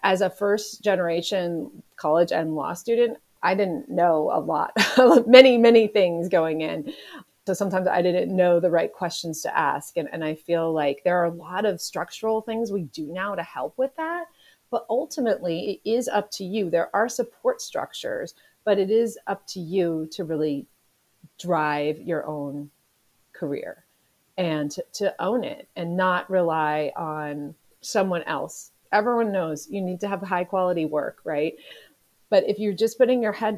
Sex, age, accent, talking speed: female, 30-49, American, 175 wpm